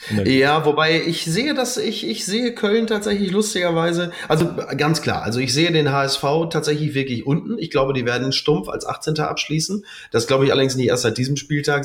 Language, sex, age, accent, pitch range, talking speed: German, male, 30-49, German, 125-170 Hz, 200 wpm